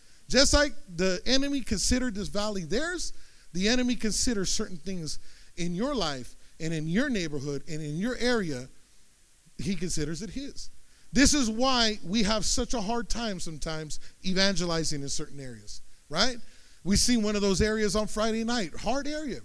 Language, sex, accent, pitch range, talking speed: English, male, American, 175-245 Hz, 165 wpm